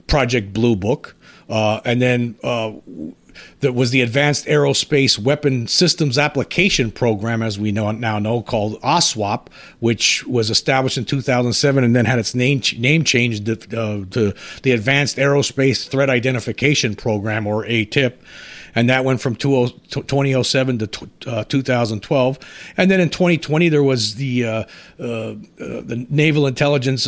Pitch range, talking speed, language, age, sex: 110-140 Hz, 145 wpm, English, 50-69, male